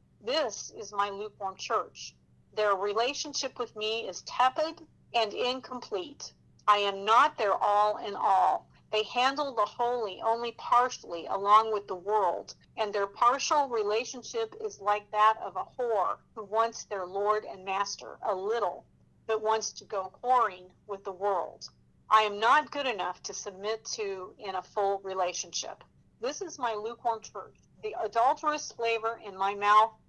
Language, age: English, 50-69